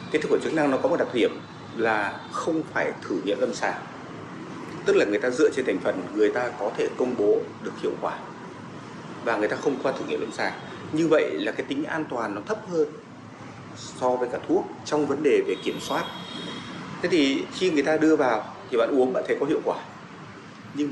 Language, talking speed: Vietnamese, 225 wpm